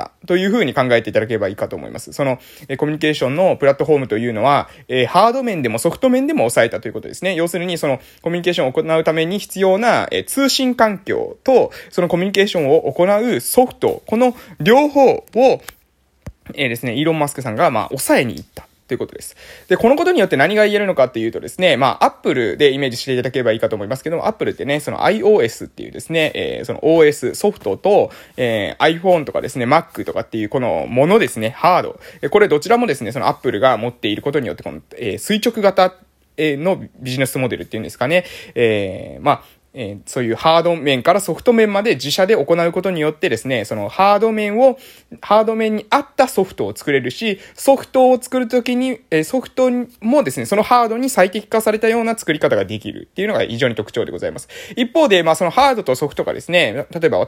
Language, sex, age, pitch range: Japanese, male, 20-39, 145-230 Hz